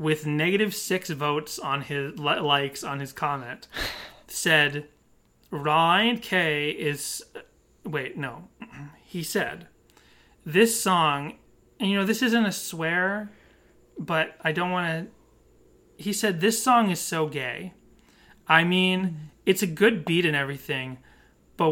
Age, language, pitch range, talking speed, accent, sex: 30-49, English, 155-195 Hz, 135 wpm, American, male